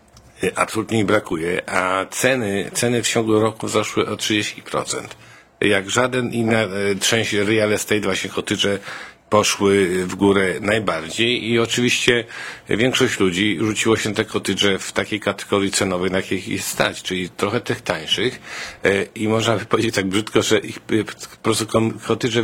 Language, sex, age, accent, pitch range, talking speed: Polish, male, 50-69, native, 95-110 Hz, 145 wpm